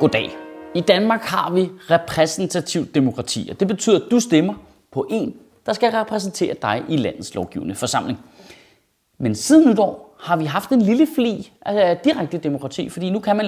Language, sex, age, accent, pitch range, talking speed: Danish, male, 30-49, native, 150-220 Hz, 180 wpm